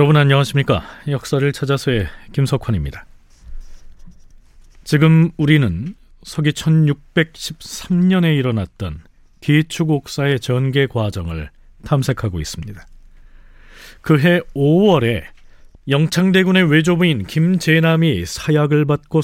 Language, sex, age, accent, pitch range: Korean, male, 40-59, native, 100-160 Hz